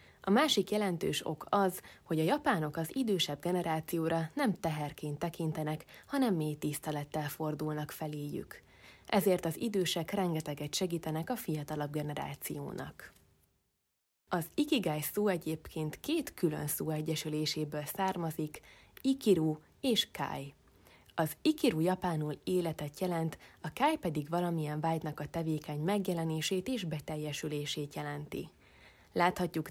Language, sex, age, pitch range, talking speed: Hungarian, female, 20-39, 150-185 Hz, 115 wpm